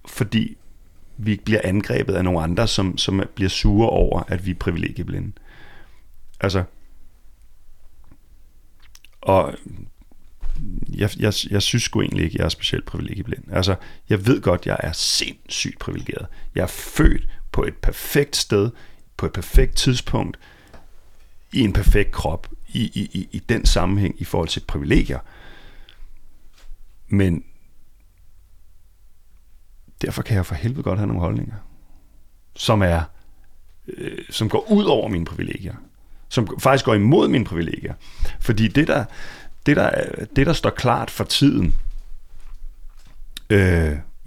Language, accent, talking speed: Danish, native, 135 wpm